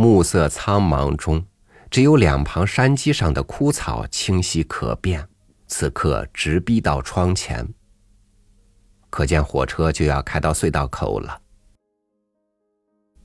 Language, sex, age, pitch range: Chinese, male, 50-69, 80-105 Hz